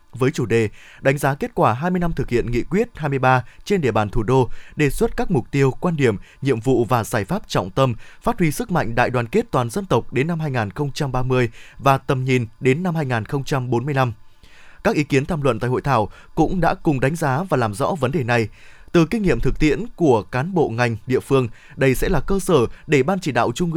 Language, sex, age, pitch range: Vietnamese, male, 20-39, 125-175 Hz